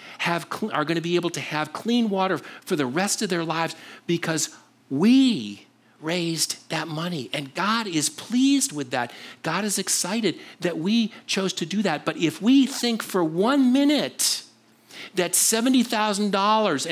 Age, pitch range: 50-69, 150-210 Hz